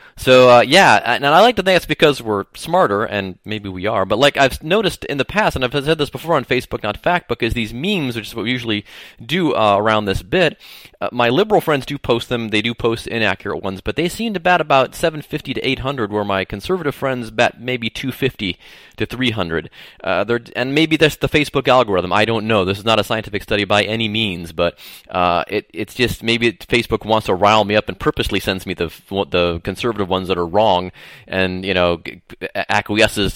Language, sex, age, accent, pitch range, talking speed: English, male, 30-49, American, 100-150 Hz, 215 wpm